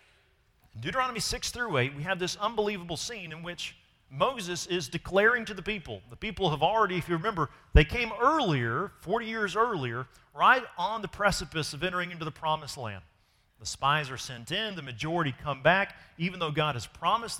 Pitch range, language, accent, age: 125-180 Hz, English, American, 40-59